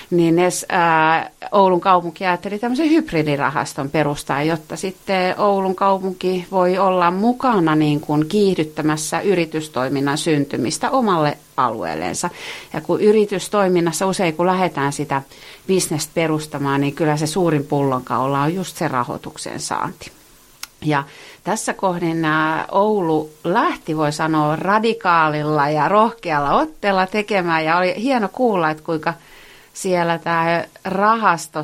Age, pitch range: 30-49, 150-185 Hz